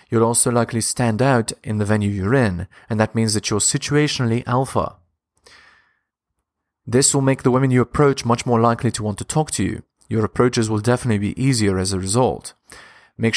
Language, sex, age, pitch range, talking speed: English, male, 30-49, 105-130 Hz, 195 wpm